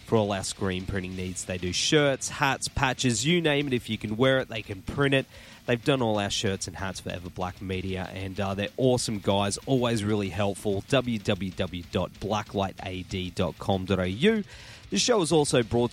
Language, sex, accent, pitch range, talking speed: English, male, Australian, 95-120 Hz, 180 wpm